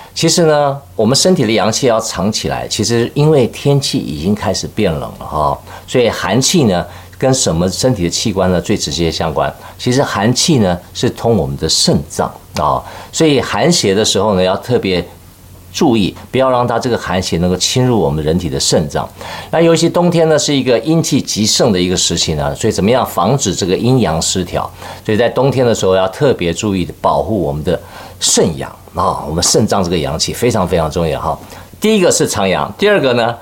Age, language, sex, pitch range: 50-69, Chinese, male, 90-135 Hz